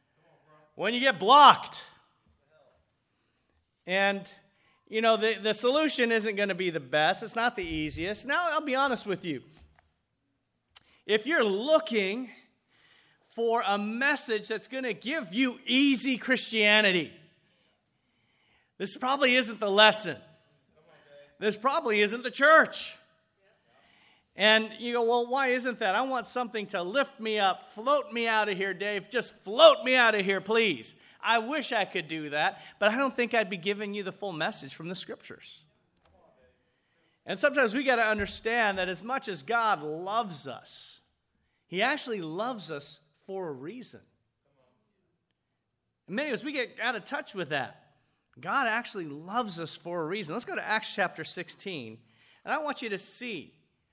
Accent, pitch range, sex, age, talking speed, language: American, 180-245 Hz, male, 40-59, 160 wpm, English